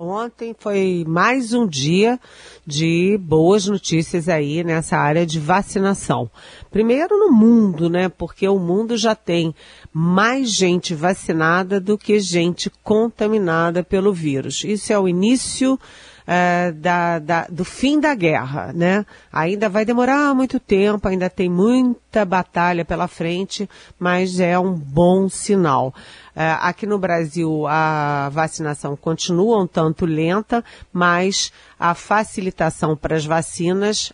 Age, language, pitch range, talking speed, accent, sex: 40-59, Portuguese, 165-215 Hz, 130 wpm, Brazilian, female